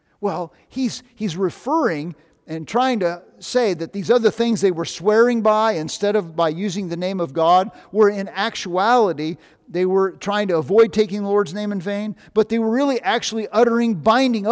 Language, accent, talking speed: English, American, 185 wpm